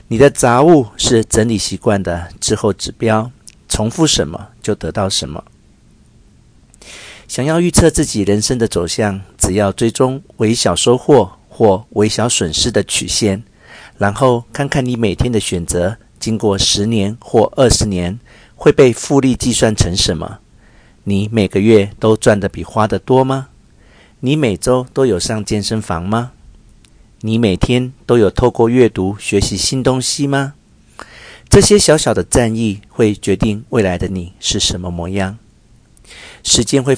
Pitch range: 100-120 Hz